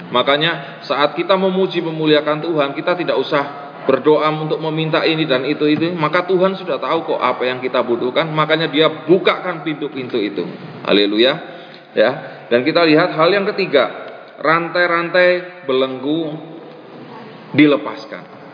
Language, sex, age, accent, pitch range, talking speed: Indonesian, male, 30-49, native, 130-165 Hz, 130 wpm